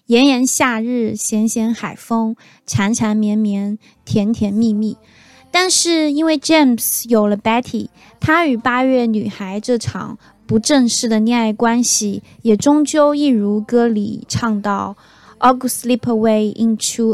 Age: 20-39